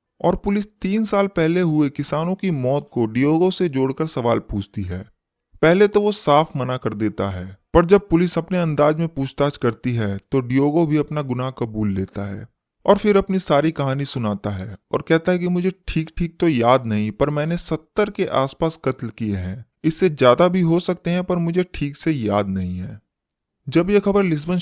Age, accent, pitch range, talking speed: 20-39, native, 120-170 Hz, 200 wpm